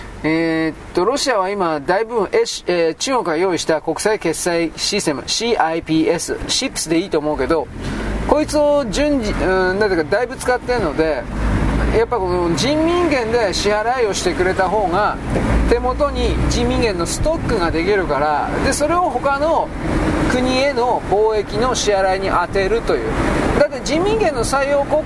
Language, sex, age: Japanese, male, 40-59